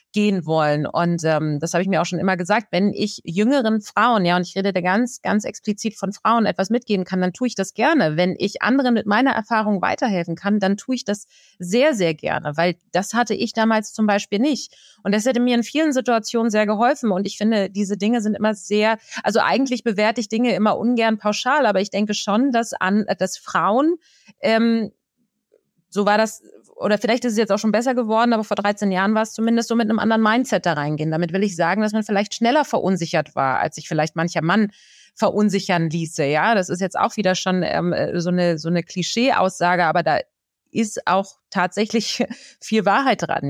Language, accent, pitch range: German, German, 185-225 Hz